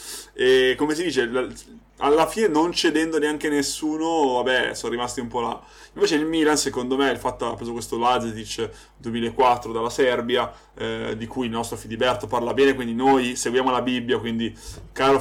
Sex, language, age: male, Italian, 20-39